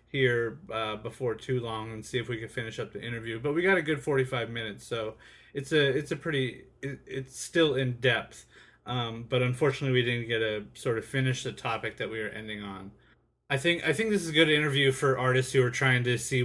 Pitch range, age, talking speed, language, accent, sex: 115-135 Hz, 30-49, 235 wpm, English, American, male